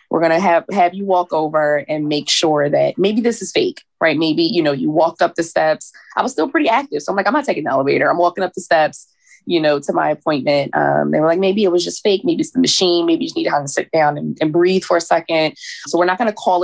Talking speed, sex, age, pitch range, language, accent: 290 wpm, female, 20-39, 145-175 Hz, English, American